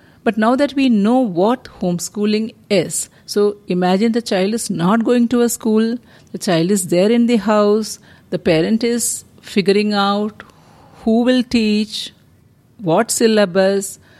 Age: 50-69